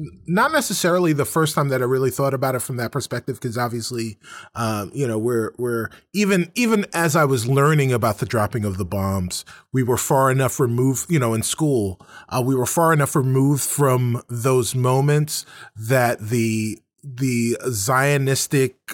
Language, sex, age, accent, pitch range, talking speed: English, male, 30-49, American, 115-150 Hz, 175 wpm